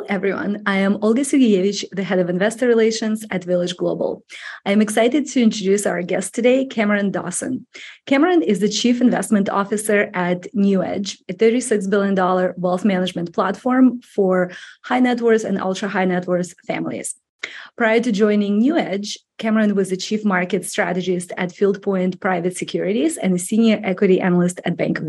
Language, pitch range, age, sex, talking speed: English, 185-220 Hz, 30-49, female, 170 wpm